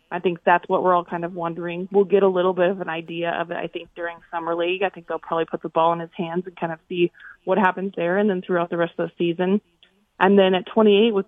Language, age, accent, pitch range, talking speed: English, 20-39, American, 170-195 Hz, 285 wpm